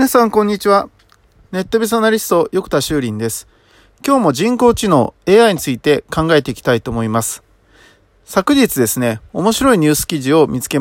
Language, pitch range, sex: Japanese, 130-210 Hz, male